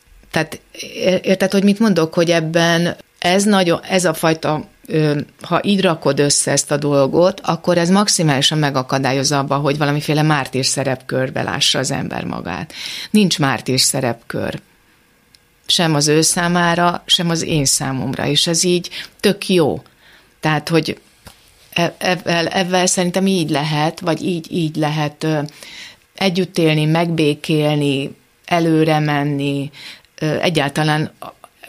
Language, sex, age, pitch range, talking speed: Hungarian, female, 30-49, 150-180 Hz, 120 wpm